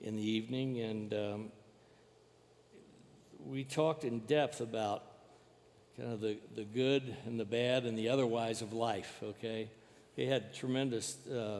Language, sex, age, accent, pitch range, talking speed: English, male, 60-79, American, 110-130 Hz, 145 wpm